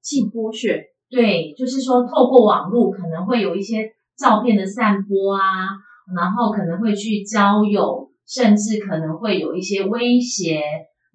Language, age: Chinese, 30-49